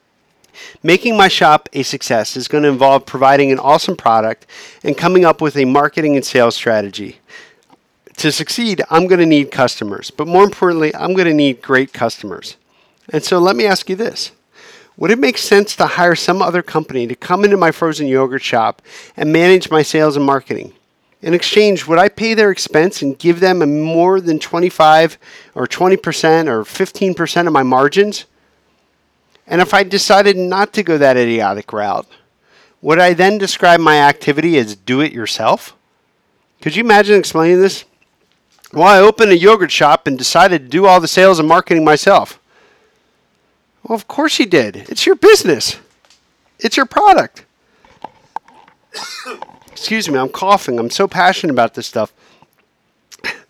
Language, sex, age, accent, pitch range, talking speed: English, male, 50-69, American, 145-200 Hz, 170 wpm